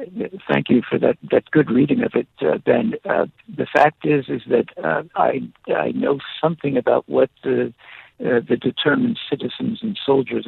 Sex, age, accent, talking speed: male, 60-79, American, 180 wpm